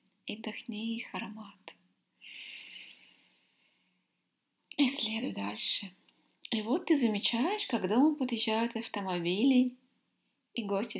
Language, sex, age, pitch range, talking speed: English, female, 20-39, 205-255 Hz, 100 wpm